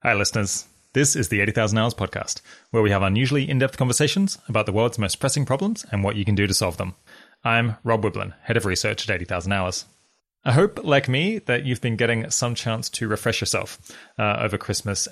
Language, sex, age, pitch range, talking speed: English, male, 20-39, 100-130 Hz, 210 wpm